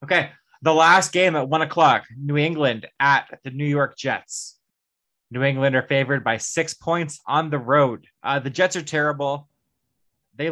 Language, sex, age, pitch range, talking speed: English, male, 20-39, 125-145 Hz, 170 wpm